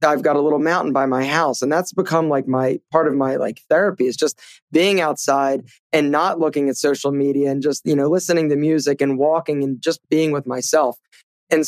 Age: 20-39